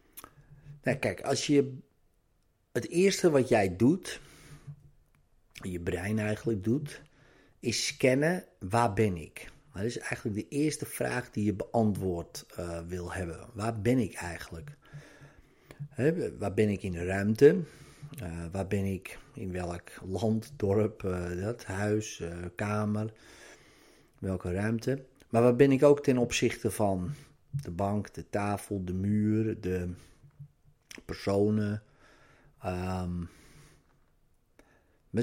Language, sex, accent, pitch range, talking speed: Dutch, male, Dutch, 95-135 Hz, 125 wpm